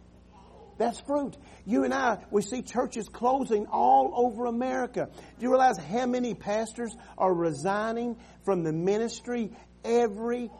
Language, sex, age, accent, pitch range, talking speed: English, male, 50-69, American, 185-240 Hz, 135 wpm